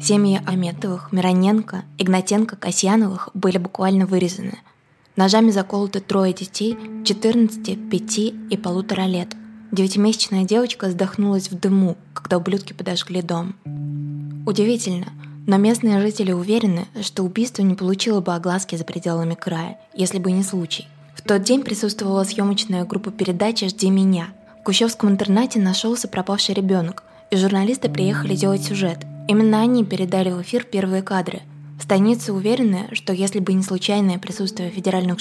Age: 20-39